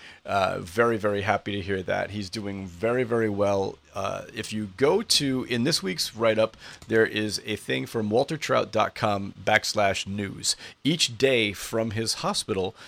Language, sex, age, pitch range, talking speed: English, male, 30-49, 100-120 Hz, 160 wpm